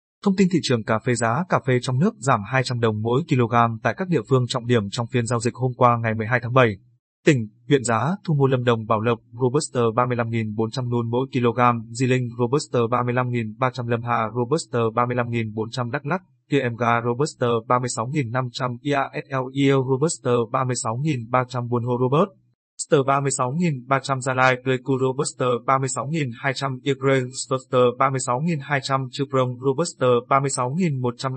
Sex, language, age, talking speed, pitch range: male, Vietnamese, 20-39, 150 wpm, 120-140 Hz